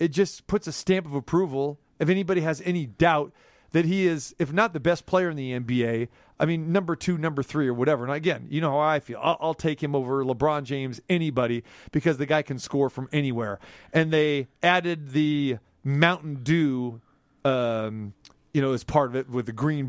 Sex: male